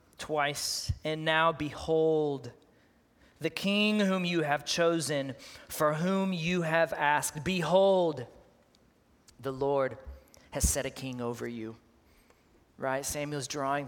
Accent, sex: American, male